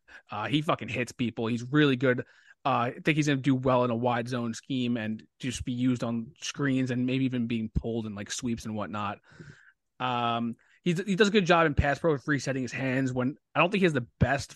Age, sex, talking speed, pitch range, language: 20-39, male, 235 wpm, 120-145 Hz, English